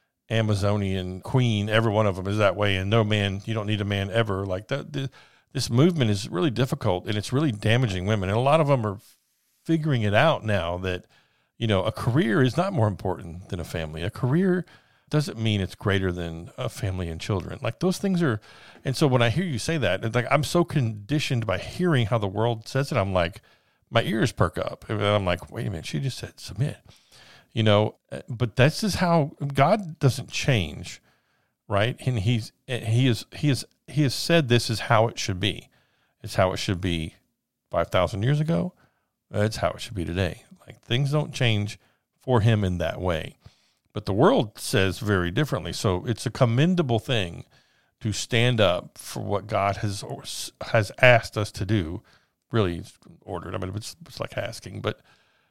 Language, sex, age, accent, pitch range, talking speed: English, male, 50-69, American, 100-135 Hz, 200 wpm